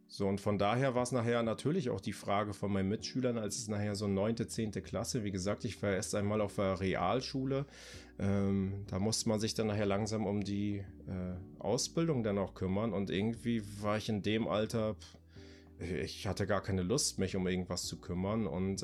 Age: 30-49